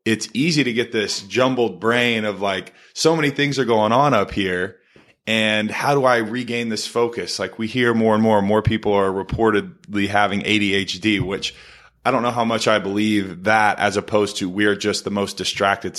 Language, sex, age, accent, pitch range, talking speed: English, male, 20-39, American, 100-115 Hz, 205 wpm